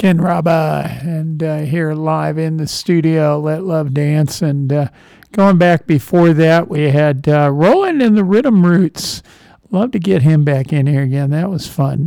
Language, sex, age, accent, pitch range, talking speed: English, male, 50-69, American, 150-175 Hz, 185 wpm